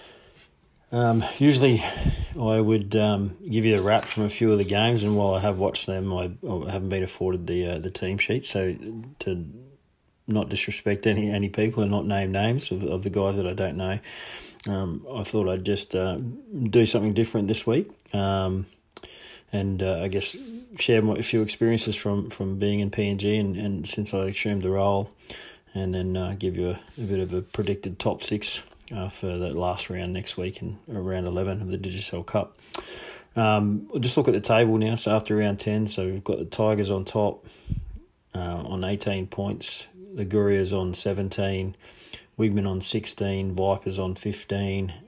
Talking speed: 190 wpm